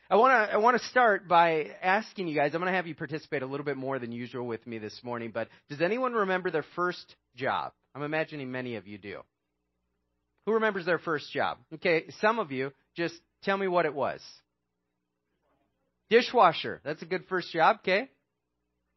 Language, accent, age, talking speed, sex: English, American, 30-49, 195 wpm, male